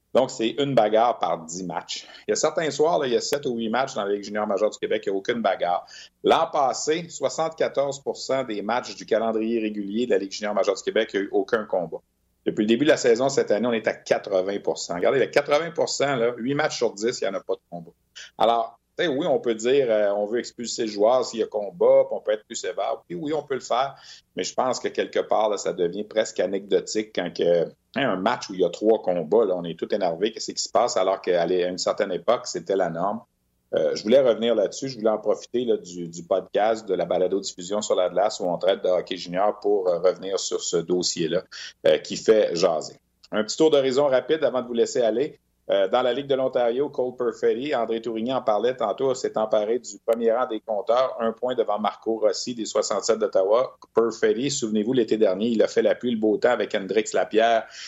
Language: French